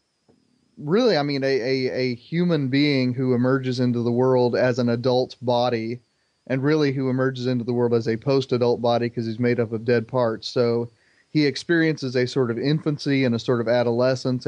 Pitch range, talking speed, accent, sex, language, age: 120-135 Hz, 195 wpm, American, male, English, 30-49